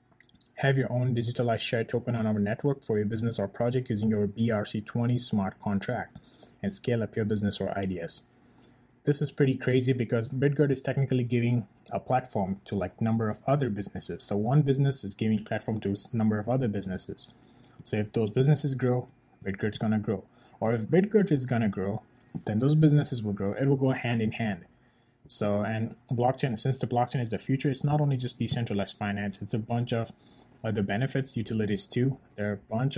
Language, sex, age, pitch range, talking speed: English, male, 20-39, 105-125 Hz, 200 wpm